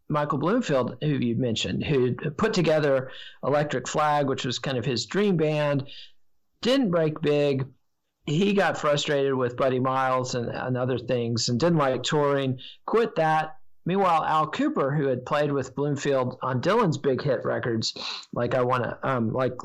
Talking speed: 170 wpm